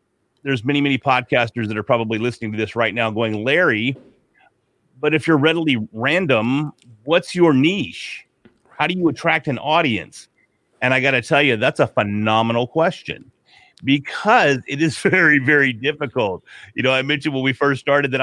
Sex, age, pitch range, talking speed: male, 40-59, 115-150 Hz, 175 wpm